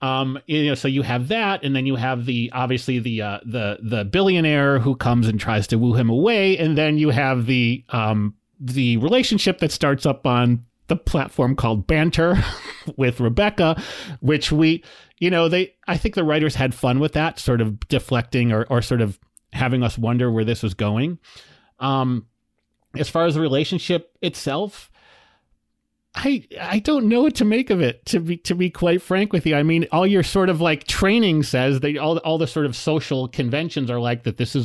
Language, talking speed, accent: English, 205 wpm, American